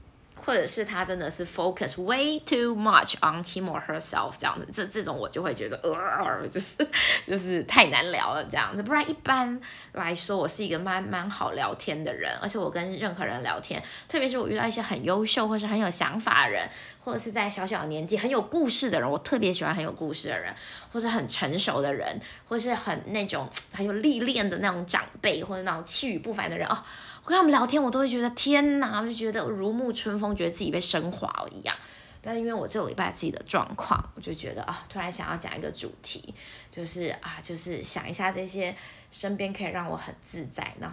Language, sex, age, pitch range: Chinese, female, 20-39, 180-240 Hz